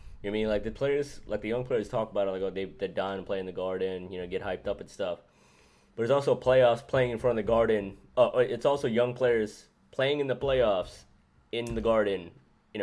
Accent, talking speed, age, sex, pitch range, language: American, 255 wpm, 20-39, male, 95-115 Hz, English